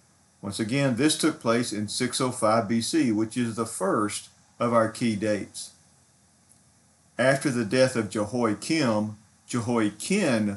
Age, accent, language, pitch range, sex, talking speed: 50-69, American, English, 105-130 Hz, male, 125 wpm